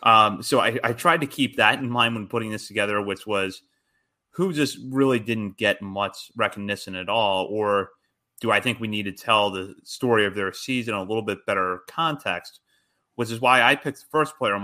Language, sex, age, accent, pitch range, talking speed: English, male, 30-49, American, 100-125 Hz, 215 wpm